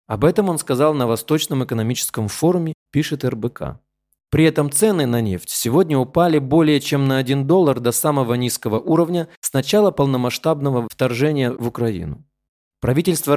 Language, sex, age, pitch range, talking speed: Russian, male, 20-39, 115-155 Hz, 150 wpm